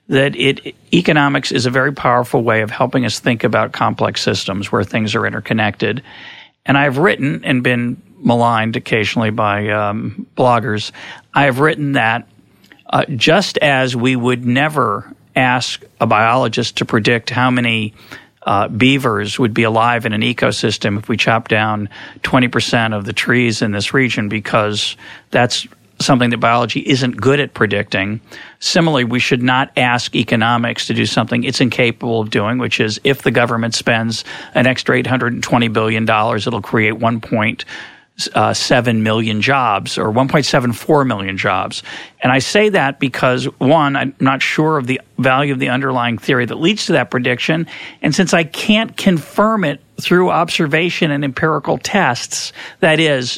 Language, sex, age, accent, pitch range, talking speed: English, male, 40-59, American, 110-135 Hz, 160 wpm